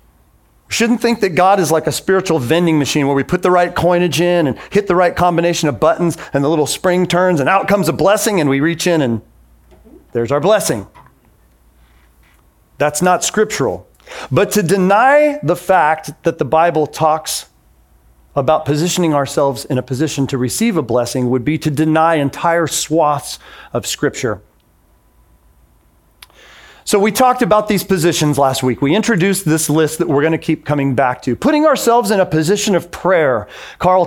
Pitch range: 130-185 Hz